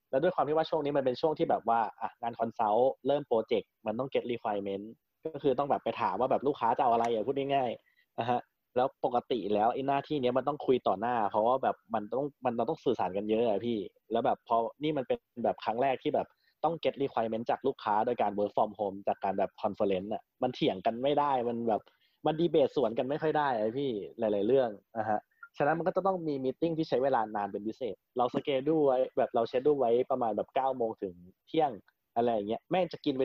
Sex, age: male, 20-39